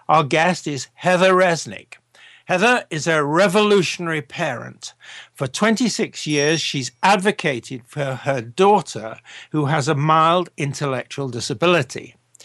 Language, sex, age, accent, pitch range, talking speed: English, male, 60-79, British, 140-180 Hz, 115 wpm